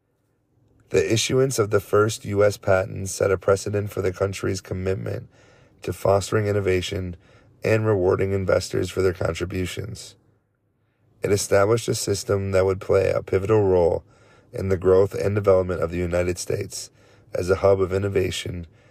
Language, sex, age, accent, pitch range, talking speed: English, male, 30-49, American, 95-115 Hz, 150 wpm